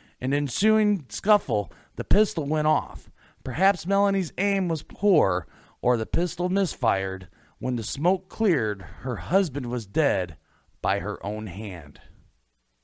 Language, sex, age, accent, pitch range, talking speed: English, male, 40-59, American, 110-175 Hz, 130 wpm